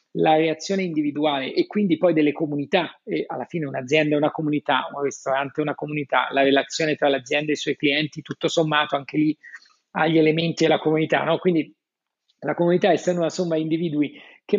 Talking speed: 190 wpm